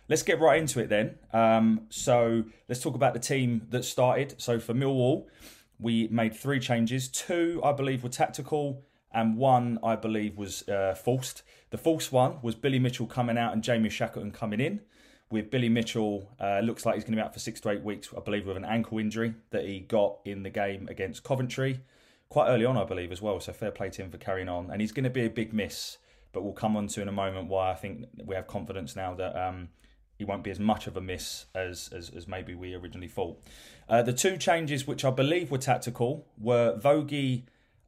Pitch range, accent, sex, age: 100-125 Hz, British, male, 20-39